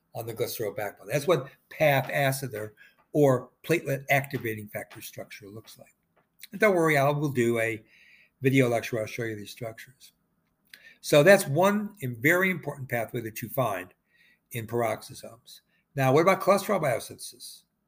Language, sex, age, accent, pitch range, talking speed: English, male, 60-79, American, 125-165 Hz, 150 wpm